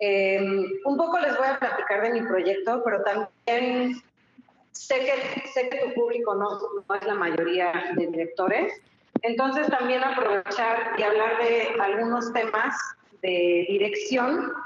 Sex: female